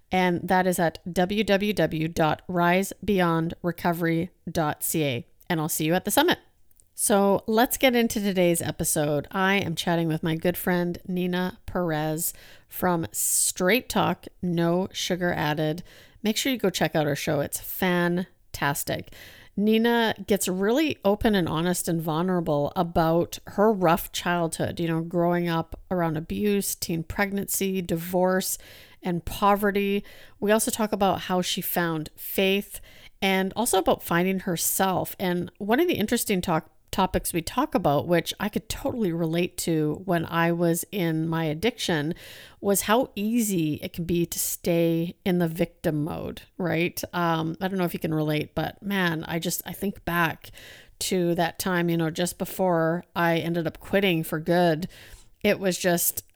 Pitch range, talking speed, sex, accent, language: 165-195 Hz, 150 wpm, female, American, English